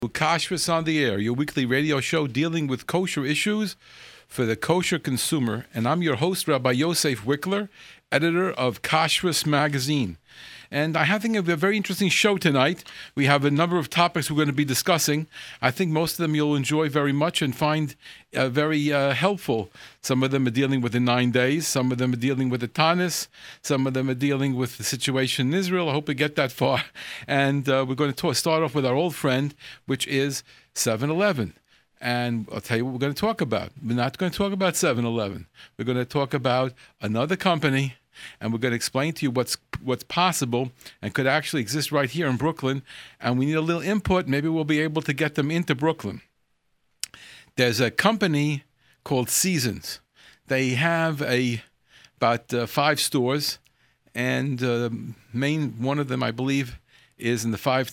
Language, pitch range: English, 125-160 Hz